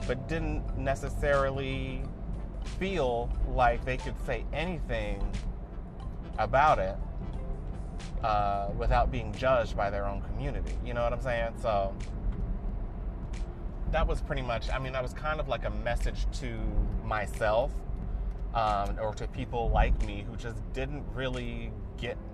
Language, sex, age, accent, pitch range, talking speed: English, male, 30-49, American, 100-130 Hz, 135 wpm